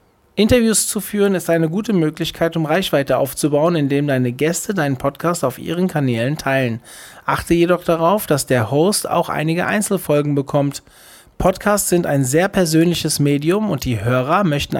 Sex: male